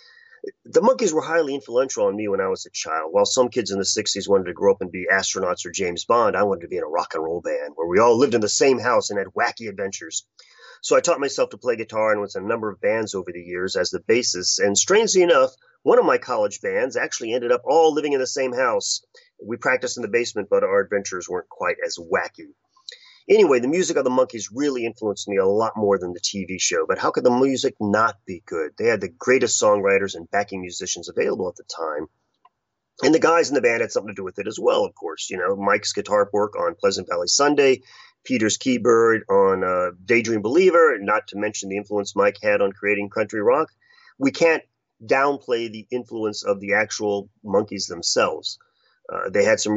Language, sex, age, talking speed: English, male, 30-49, 230 wpm